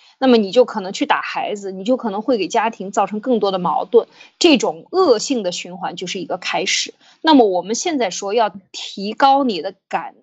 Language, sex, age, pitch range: Chinese, female, 20-39, 205-290 Hz